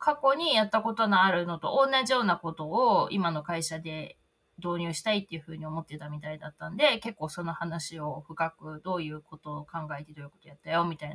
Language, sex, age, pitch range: Japanese, female, 20-39, 165-245 Hz